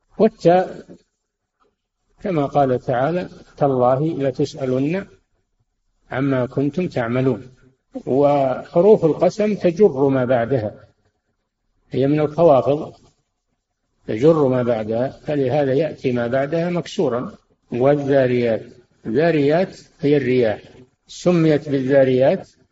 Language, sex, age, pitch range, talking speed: Arabic, male, 60-79, 125-150 Hz, 80 wpm